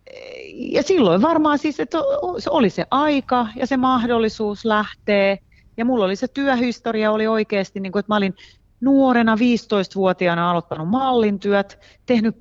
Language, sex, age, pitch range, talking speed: Finnish, female, 30-49, 165-225 Hz, 135 wpm